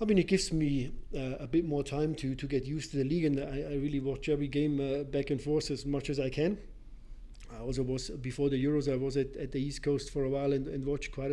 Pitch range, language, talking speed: 135-155 Hz, English, 280 wpm